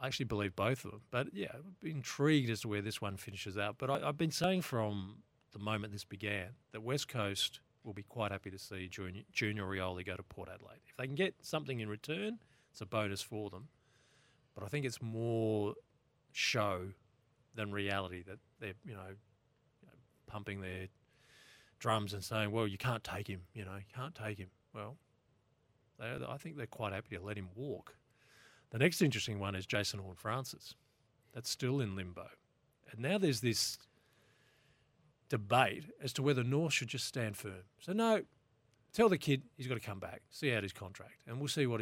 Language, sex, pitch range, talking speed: English, male, 100-130 Hz, 195 wpm